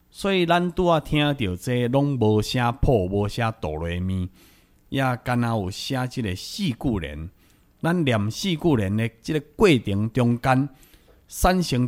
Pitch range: 100-140 Hz